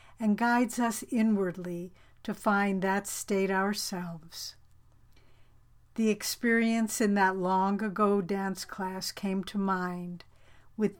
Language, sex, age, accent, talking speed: English, female, 60-79, American, 115 wpm